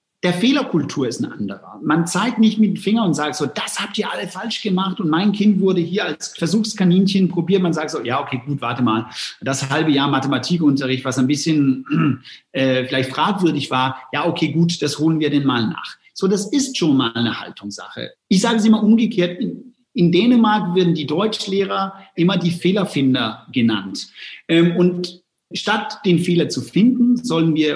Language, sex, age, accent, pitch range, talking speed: German, male, 40-59, German, 140-195 Hz, 185 wpm